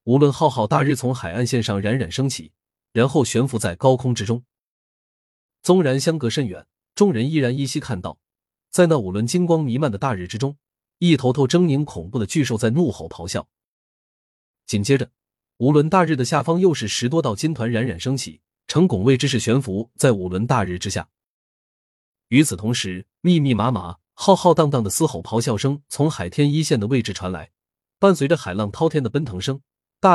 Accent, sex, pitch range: native, male, 100-150 Hz